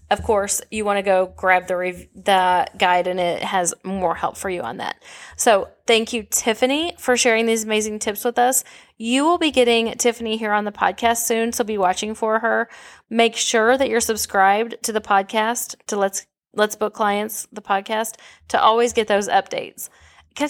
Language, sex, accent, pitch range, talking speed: English, female, American, 195-235 Hz, 195 wpm